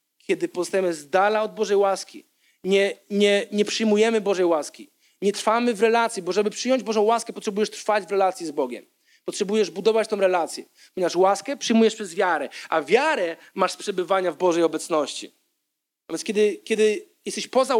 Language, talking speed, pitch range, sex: Polish, 170 wpm, 195-285 Hz, male